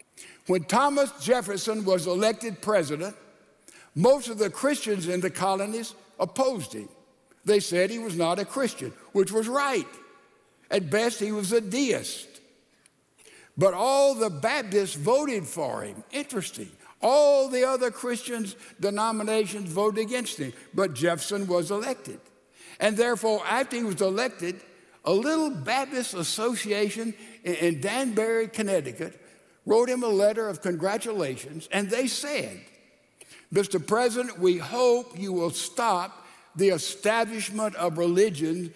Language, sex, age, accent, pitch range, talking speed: English, male, 60-79, American, 185-230 Hz, 130 wpm